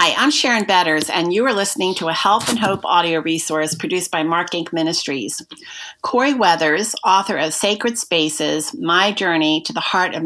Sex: female